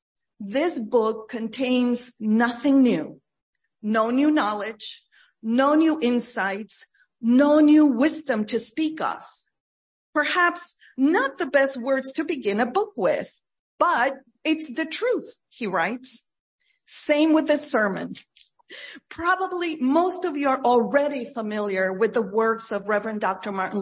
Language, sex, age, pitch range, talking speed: English, female, 50-69, 225-290 Hz, 130 wpm